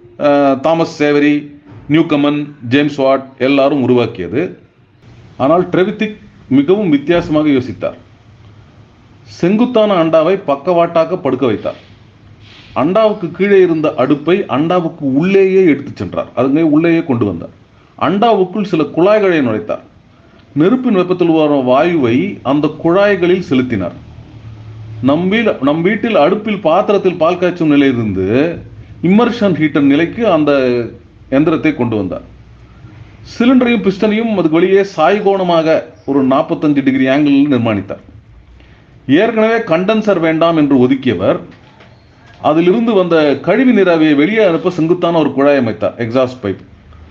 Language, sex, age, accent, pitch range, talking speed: Tamil, male, 40-59, native, 130-190 Hz, 105 wpm